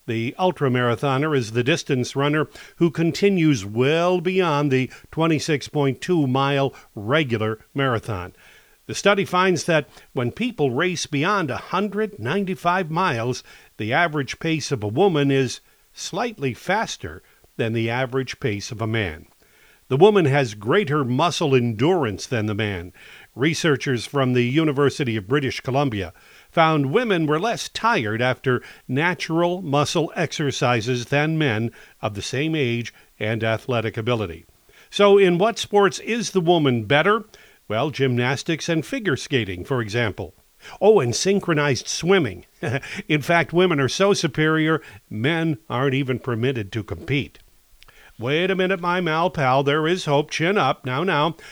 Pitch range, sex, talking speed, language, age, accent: 125-170 Hz, male, 135 wpm, English, 50-69, American